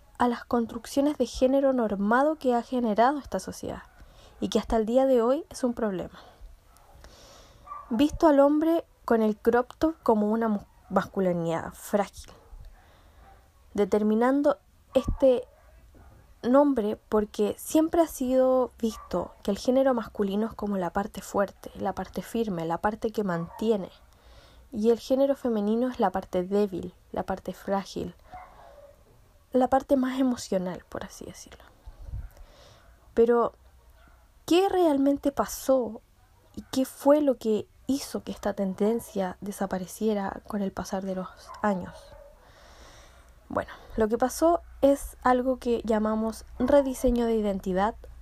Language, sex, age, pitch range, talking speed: Spanish, female, 10-29, 200-265 Hz, 130 wpm